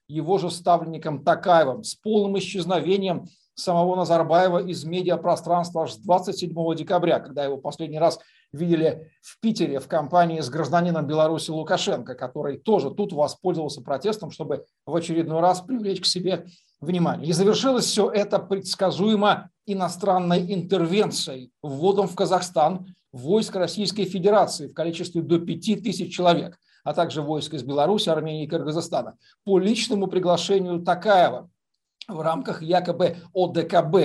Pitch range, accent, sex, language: 155-195 Hz, native, male, Russian